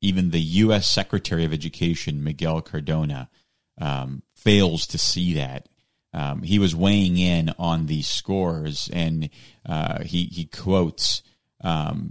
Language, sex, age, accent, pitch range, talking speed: English, male, 30-49, American, 90-115 Hz, 135 wpm